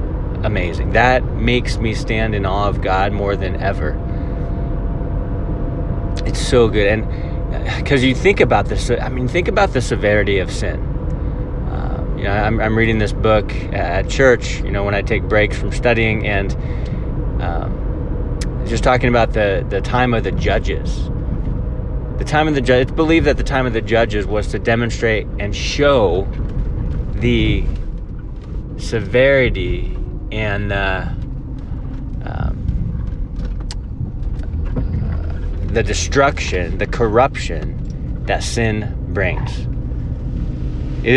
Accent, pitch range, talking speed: American, 95-120 Hz, 135 wpm